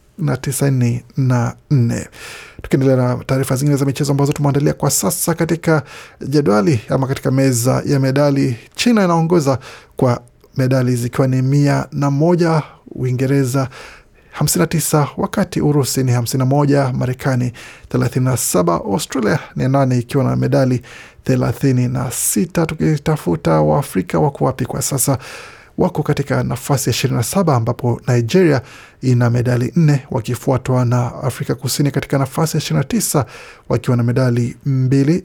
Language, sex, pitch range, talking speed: Swahili, male, 125-145 Hz, 125 wpm